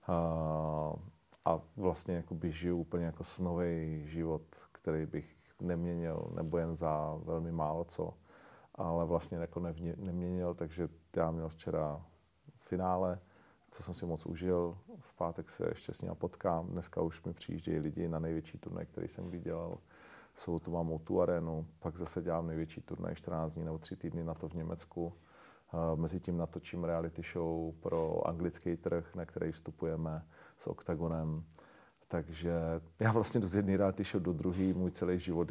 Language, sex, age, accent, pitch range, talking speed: Czech, male, 40-59, native, 80-90 Hz, 160 wpm